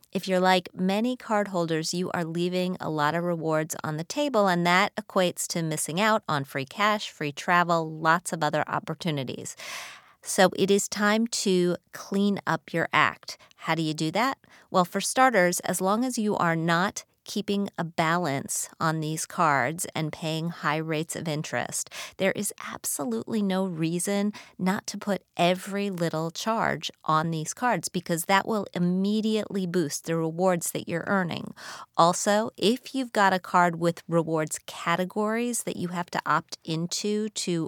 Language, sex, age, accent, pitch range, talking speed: English, female, 30-49, American, 165-200 Hz, 165 wpm